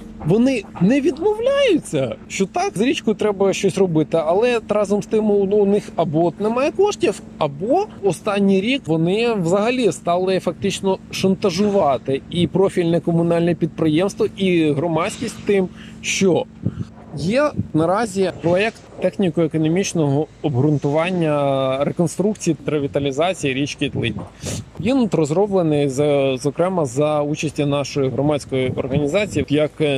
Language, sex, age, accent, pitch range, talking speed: Ukrainian, male, 20-39, native, 150-200 Hz, 110 wpm